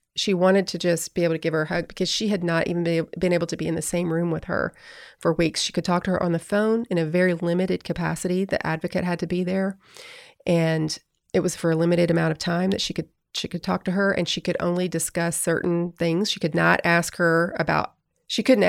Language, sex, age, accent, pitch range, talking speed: English, female, 30-49, American, 165-185 Hz, 255 wpm